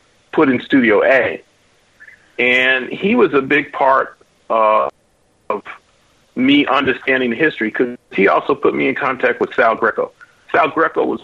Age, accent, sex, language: 40-59, American, male, English